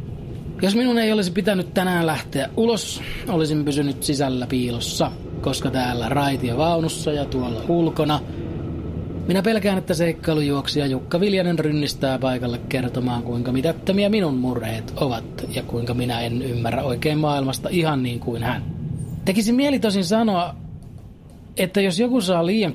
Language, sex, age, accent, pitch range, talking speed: Finnish, male, 30-49, native, 130-185 Hz, 150 wpm